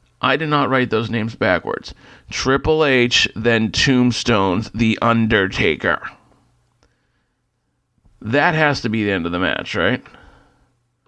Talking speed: 125 wpm